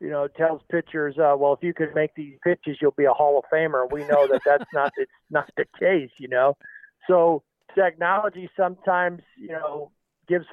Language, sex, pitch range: English, male, 145-175 Hz